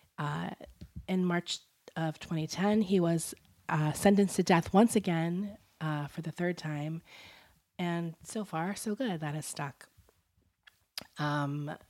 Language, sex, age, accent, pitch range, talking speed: English, female, 30-49, American, 145-175 Hz, 135 wpm